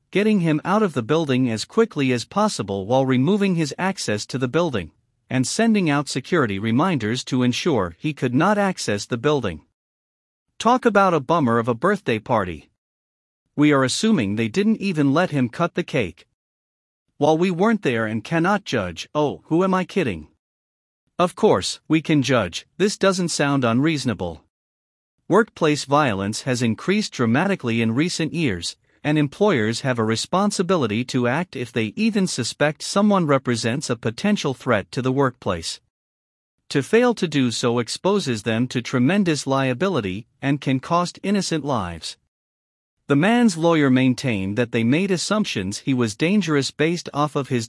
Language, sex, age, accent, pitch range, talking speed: English, male, 50-69, American, 115-170 Hz, 160 wpm